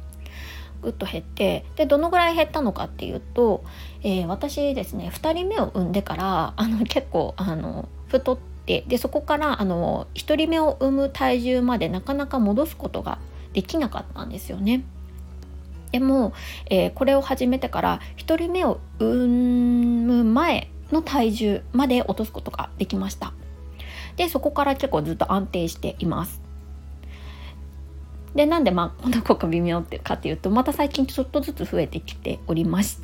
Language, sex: Japanese, female